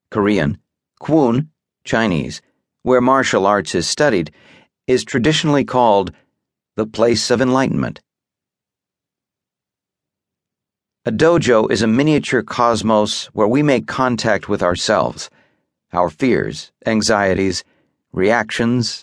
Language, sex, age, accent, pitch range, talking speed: English, male, 50-69, American, 100-125 Hz, 100 wpm